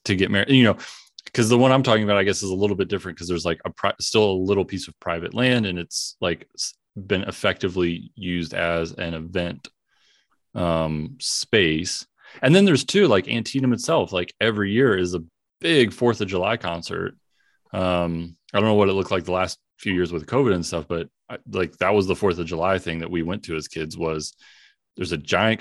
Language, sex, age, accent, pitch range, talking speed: English, male, 30-49, American, 85-110 Hz, 215 wpm